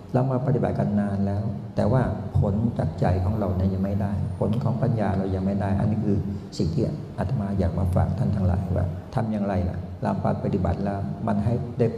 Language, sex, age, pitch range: Thai, male, 60-79, 95-115 Hz